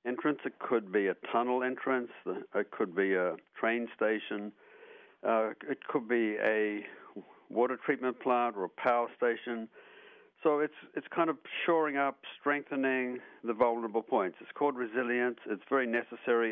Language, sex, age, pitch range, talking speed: English, male, 60-79, 115-145 Hz, 155 wpm